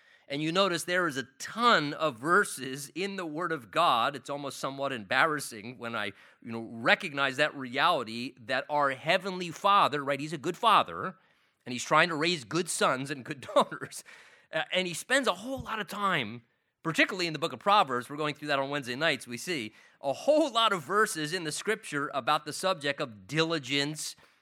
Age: 30-49